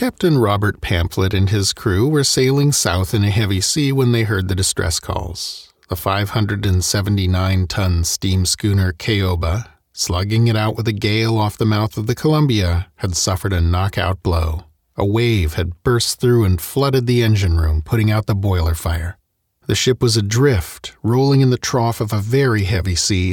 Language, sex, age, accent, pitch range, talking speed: English, male, 40-59, American, 95-125 Hz, 175 wpm